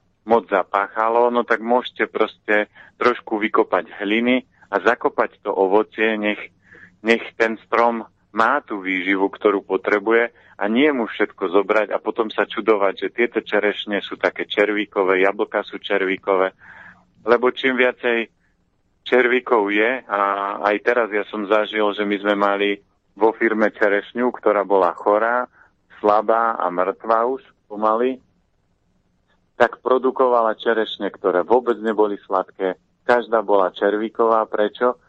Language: Slovak